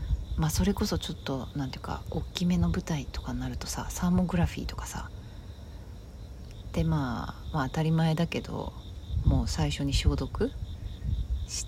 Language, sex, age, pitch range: Japanese, female, 40-59, 90-150 Hz